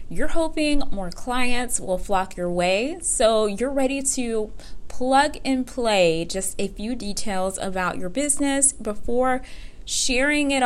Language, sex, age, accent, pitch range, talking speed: English, female, 20-39, American, 190-250 Hz, 140 wpm